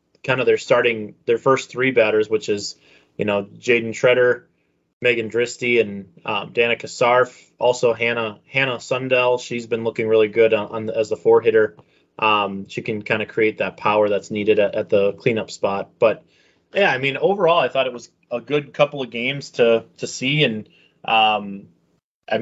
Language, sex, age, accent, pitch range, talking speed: English, male, 20-39, American, 110-125 Hz, 190 wpm